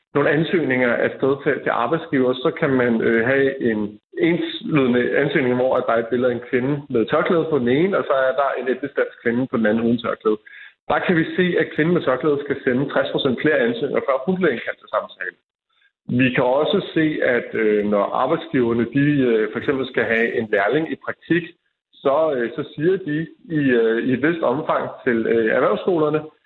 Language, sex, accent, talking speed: Danish, male, native, 210 wpm